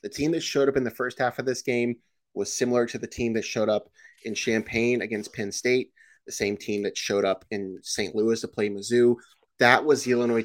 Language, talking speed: English, 235 wpm